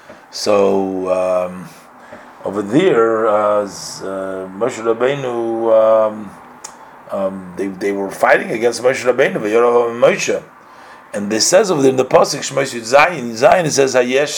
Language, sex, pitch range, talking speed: English, male, 105-140 Hz, 120 wpm